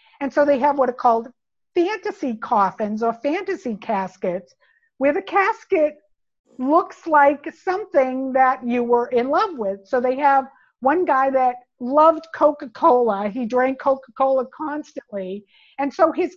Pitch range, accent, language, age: 240-315 Hz, American, English, 50-69